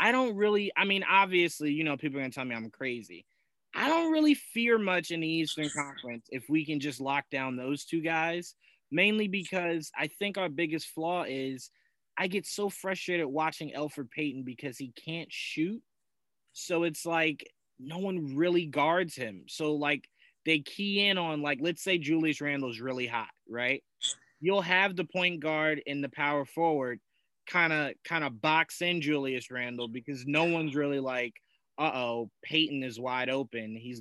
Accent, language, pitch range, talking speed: American, English, 130-165 Hz, 185 wpm